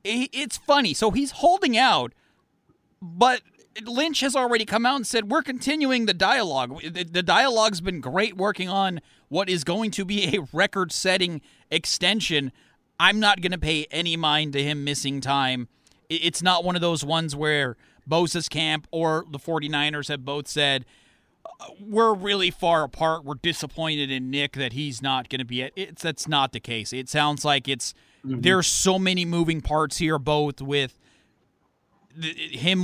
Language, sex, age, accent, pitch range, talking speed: English, male, 30-49, American, 140-195 Hz, 170 wpm